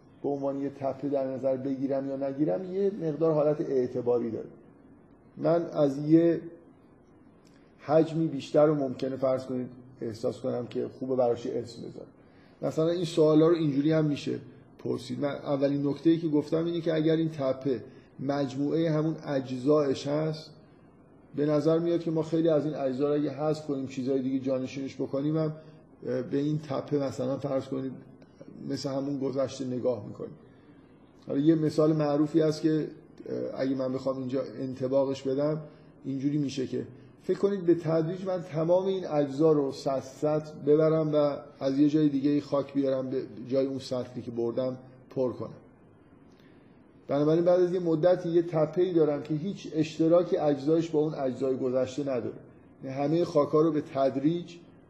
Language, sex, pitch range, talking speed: Persian, male, 135-155 Hz, 155 wpm